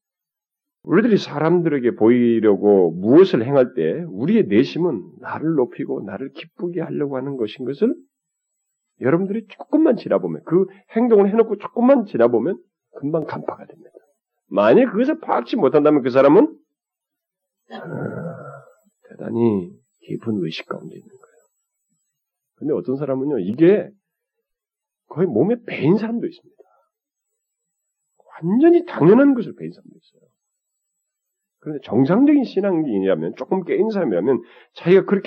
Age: 40-59